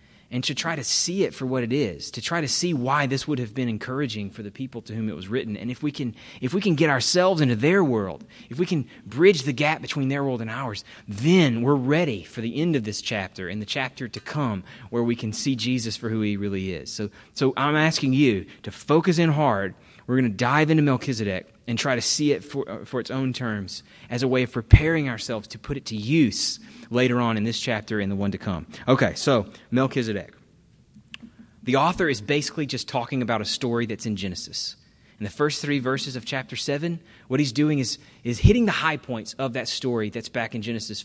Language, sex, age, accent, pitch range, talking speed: English, male, 30-49, American, 110-145 Hz, 235 wpm